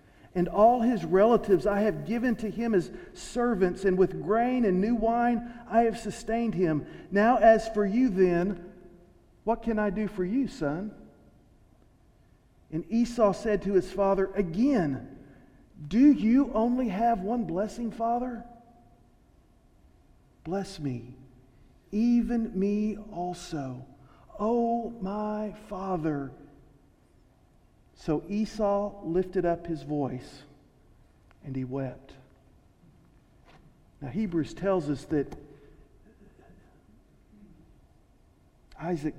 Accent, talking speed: American, 105 wpm